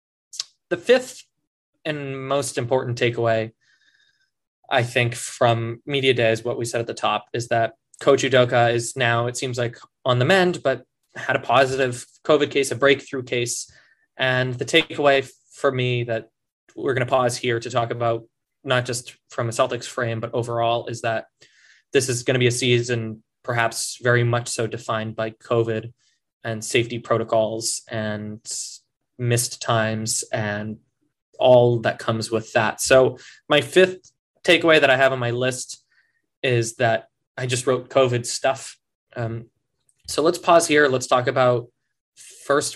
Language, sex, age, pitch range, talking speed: English, male, 20-39, 115-135 Hz, 160 wpm